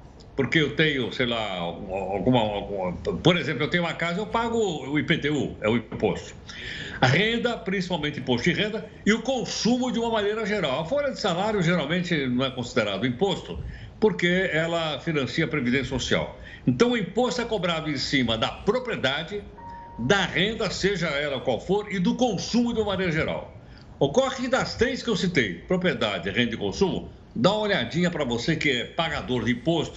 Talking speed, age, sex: 180 wpm, 60-79, male